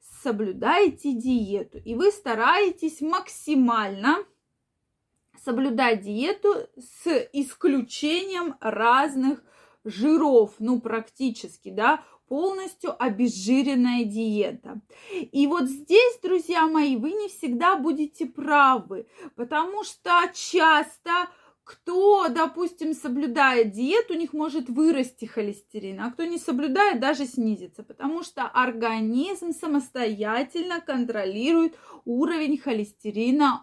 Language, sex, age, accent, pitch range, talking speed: Russian, female, 20-39, native, 240-335 Hz, 95 wpm